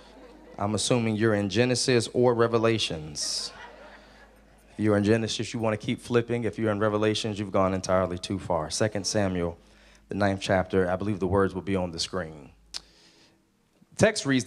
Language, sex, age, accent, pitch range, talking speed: English, male, 30-49, American, 100-125 Hz, 175 wpm